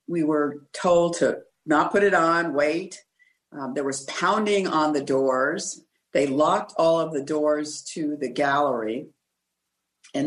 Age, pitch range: 50-69, 150-180 Hz